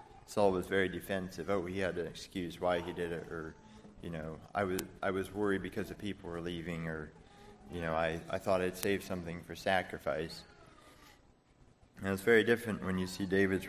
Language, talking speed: English, 195 wpm